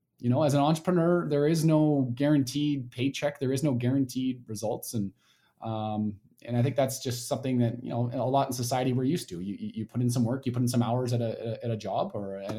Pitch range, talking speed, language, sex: 120-170 Hz, 245 wpm, English, male